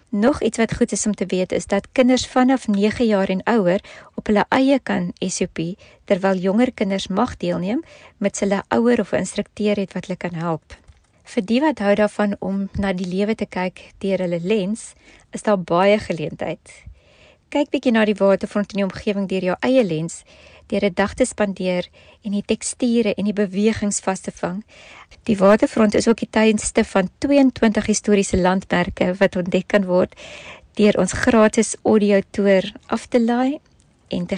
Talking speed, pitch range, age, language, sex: 175 wpm, 190-225 Hz, 20-39, English, female